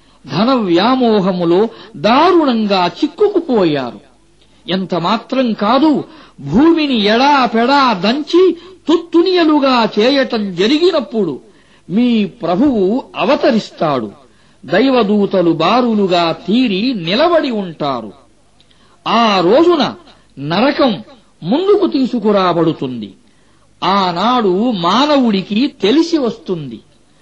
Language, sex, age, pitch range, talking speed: Arabic, male, 50-69, 200-285 Hz, 75 wpm